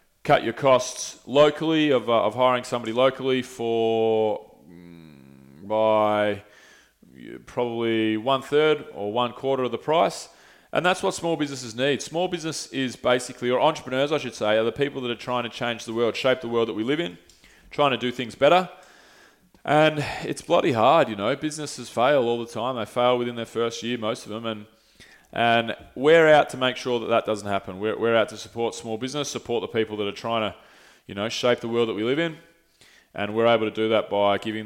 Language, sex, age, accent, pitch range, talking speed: English, male, 20-39, Australian, 110-145 Hz, 210 wpm